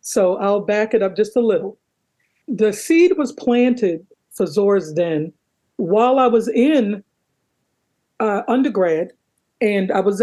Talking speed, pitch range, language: 140 wpm, 195-235 Hz, English